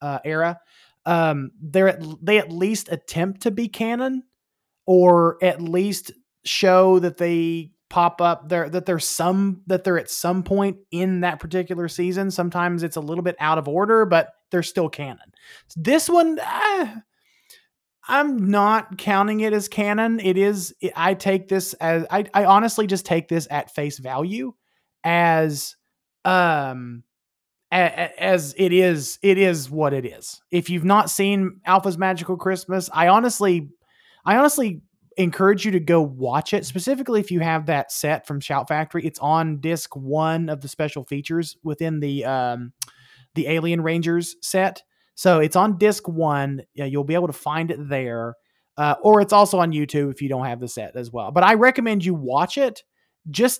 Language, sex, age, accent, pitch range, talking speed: English, male, 20-39, American, 155-195 Hz, 170 wpm